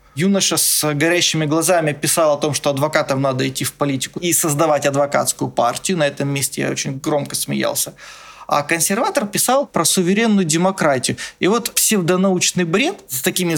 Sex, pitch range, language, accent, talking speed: male, 145-180 Hz, Russian, native, 160 wpm